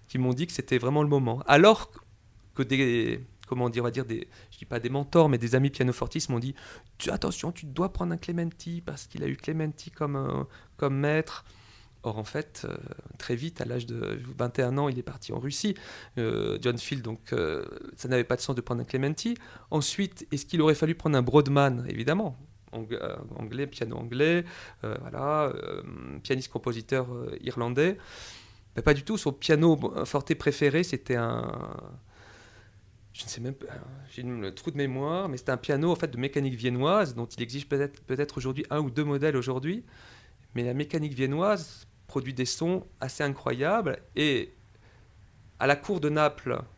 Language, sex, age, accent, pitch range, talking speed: French, male, 40-59, French, 120-150 Hz, 190 wpm